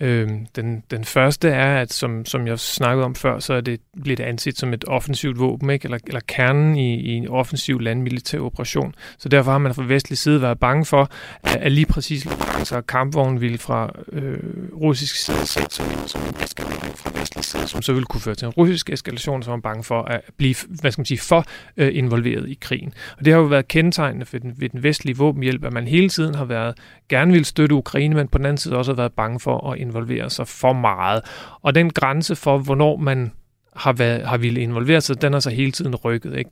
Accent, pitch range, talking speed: native, 120-150 Hz, 215 wpm